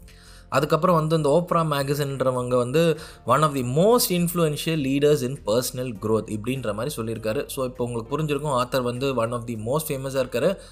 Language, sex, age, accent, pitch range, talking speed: Tamil, male, 20-39, native, 115-150 Hz, 170 wpm